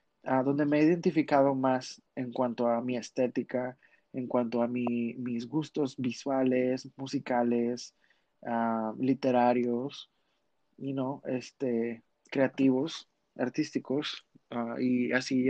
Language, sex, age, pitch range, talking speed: Spanish, male, 20-39, 125-145 Hz, 125 wpm